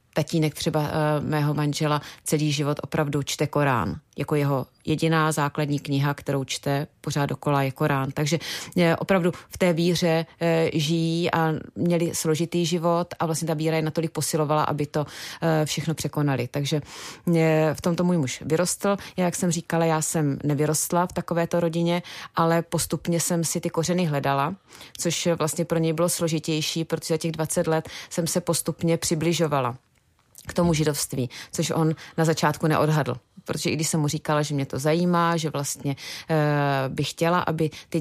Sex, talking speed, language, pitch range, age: female, 160 wpm, Czech, 150-165 Hz, 30-49